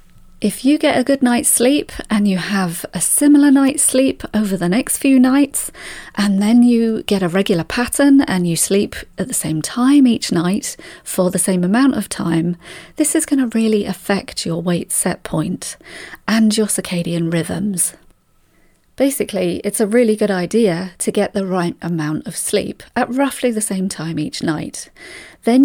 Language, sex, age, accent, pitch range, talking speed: English, female, 40-59, British, 175-250 Hz, 180 wpm